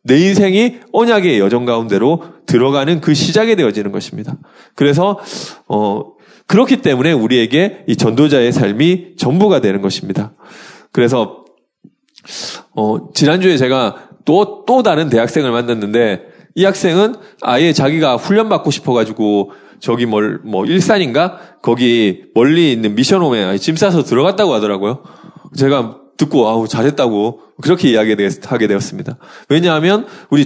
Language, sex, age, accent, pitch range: Korean, male, 20-39, native, 130-200 Hz